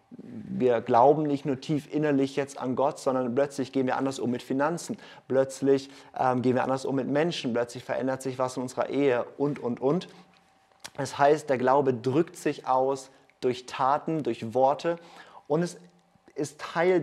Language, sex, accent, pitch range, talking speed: German, male, German, 130-150 Hz, 175 wpm